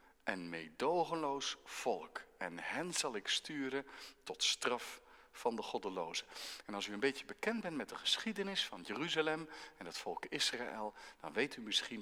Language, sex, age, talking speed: Dutch, male, 50-69, 165 wpm